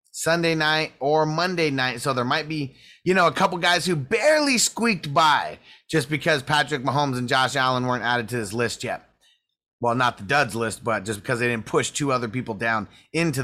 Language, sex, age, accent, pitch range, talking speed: English, male, 30-49, American, 125-155 Hz, 210 wpm